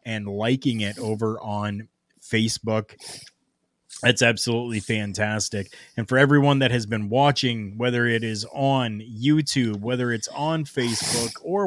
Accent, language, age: American, English, 20-39